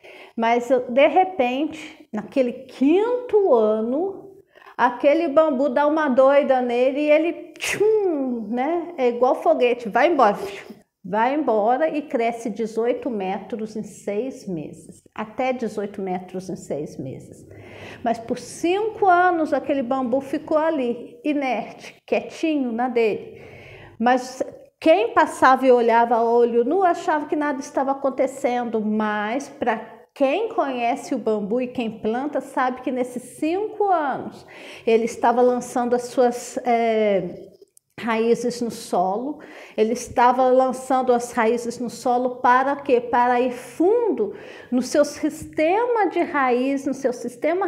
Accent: Brazilian